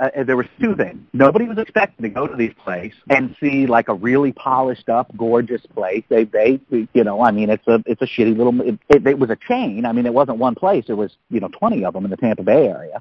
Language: English